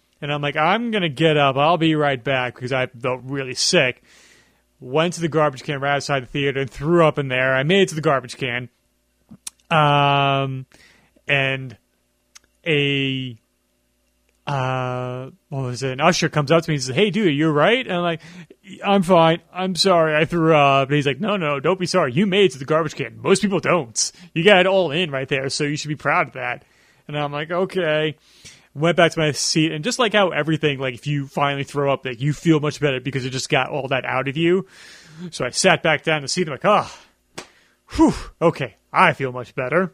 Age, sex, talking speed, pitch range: 30-49, male, 225 wpm, 130-165 Hz